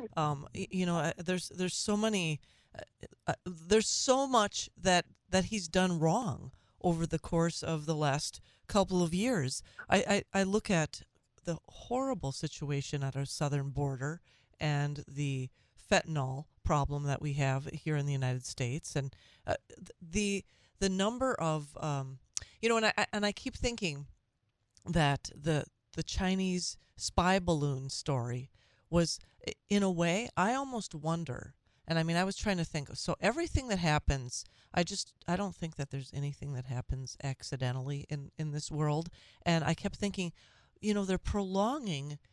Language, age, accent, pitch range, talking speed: English, 40-59, American, 140-185 Hz, 160 wpm